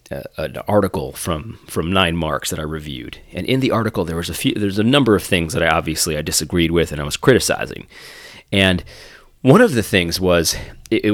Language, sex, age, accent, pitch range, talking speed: English, male, 30-49, American, 85-110 Hz, 210 wpm